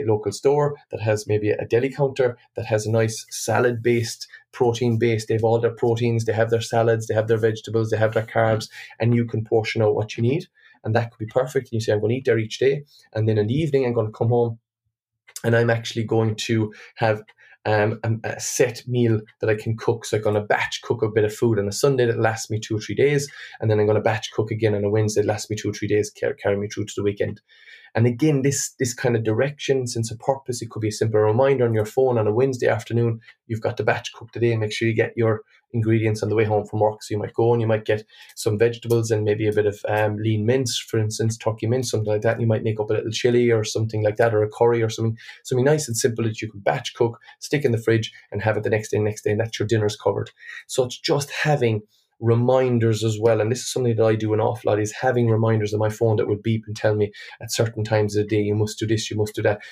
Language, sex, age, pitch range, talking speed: English, male, 20-39, 110-120 Hz, 270 wpm